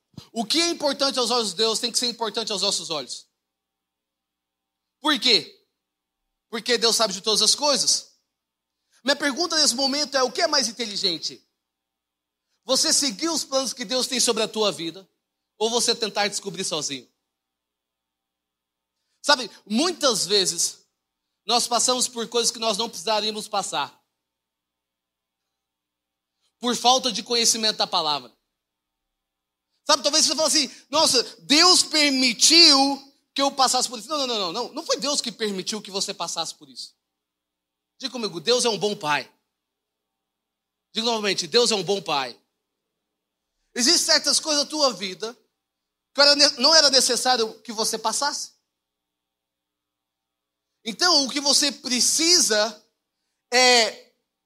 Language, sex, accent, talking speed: Portuguese, male, Brazilian, 140 wpm